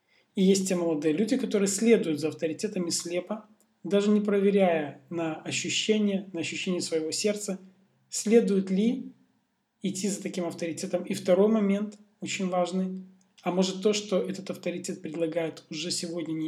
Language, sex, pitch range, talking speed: Russian, male, 170-205 Hz, 145 wpm